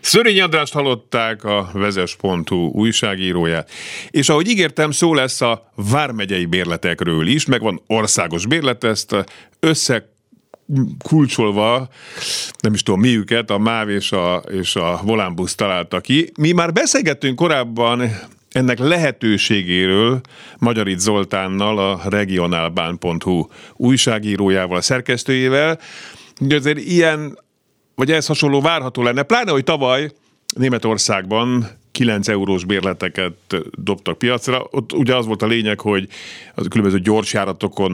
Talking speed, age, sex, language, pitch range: 120 wpm, 50-69, male, Hungarian, 95-130 Hz